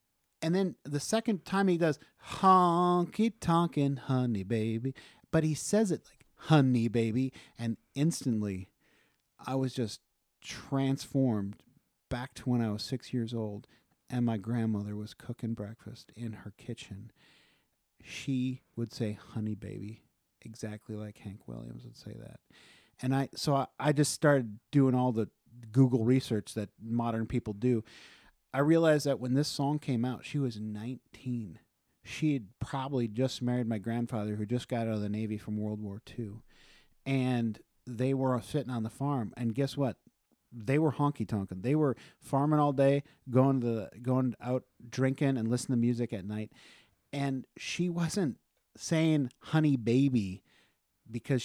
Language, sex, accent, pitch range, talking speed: English, male, American, 110-140 Hz, 155 wpm